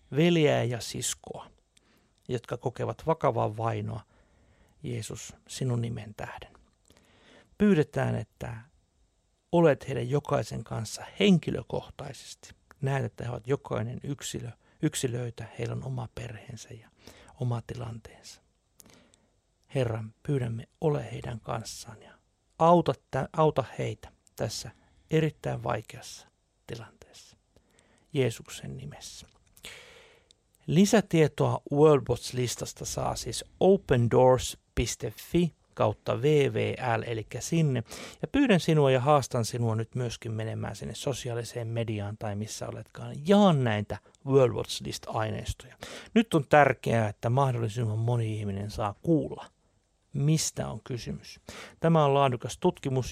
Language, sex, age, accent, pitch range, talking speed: Finnish, male, 60-79, native, 110-145 Hz, 100 wpm